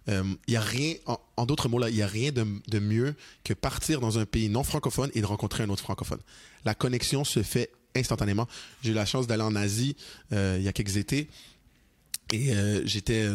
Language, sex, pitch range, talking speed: French, male, 105-120 Hz, 220 wpm